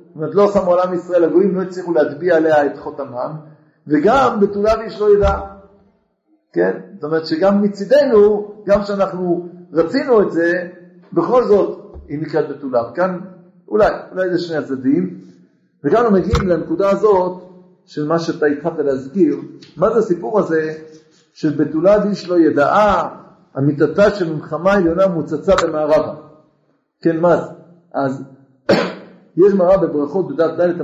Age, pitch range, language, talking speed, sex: 50-69, 150-195 Hz, Hebrew, 140 wpm, male